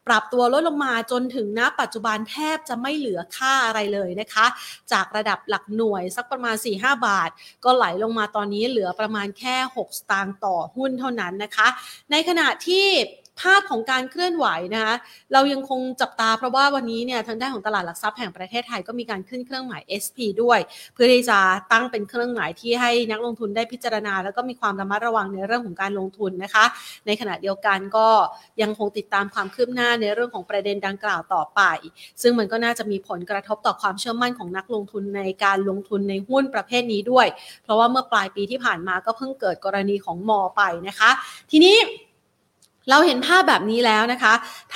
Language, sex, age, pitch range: Thai, female, 30-49, 205-250 Hz